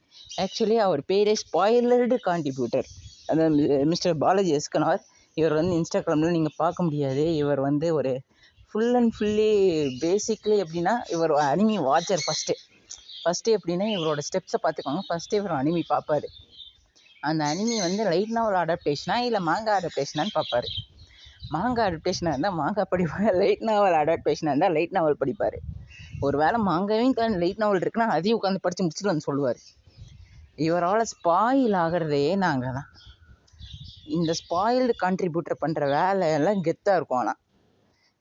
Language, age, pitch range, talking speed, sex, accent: Tamil, 30-49, 155-210 Hz, 130 wpm, female, native